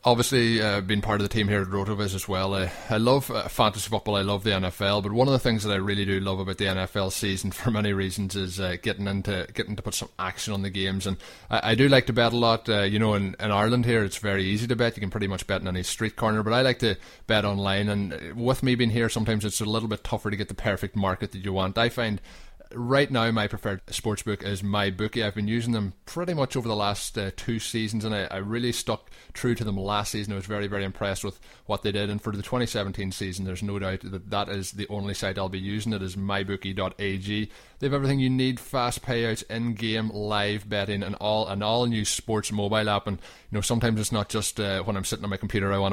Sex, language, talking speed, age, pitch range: male, English, 265 wpm, 20-39, 95-110 Hz